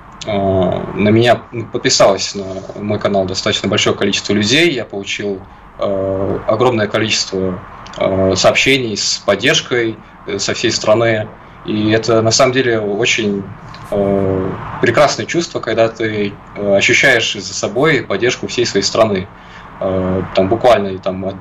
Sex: male